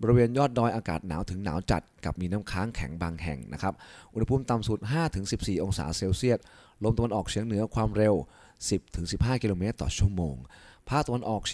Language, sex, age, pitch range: Thai, male, 20-39, 90-115 Hz